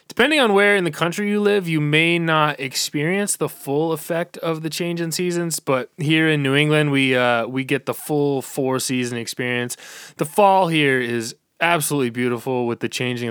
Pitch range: 120-165 Hz